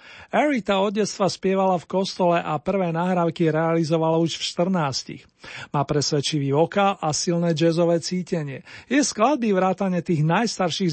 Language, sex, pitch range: Slovak, male, 155-185 Hz